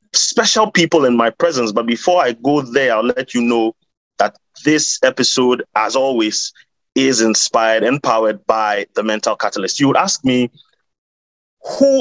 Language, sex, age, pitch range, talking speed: English, male, 30-49, 120-165 Hz, 160 wpm